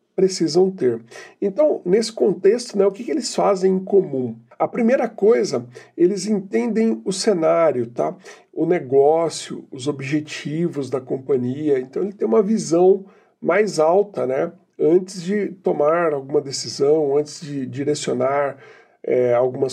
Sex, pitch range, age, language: male, 145-200 Hz, 50-69, Portuguese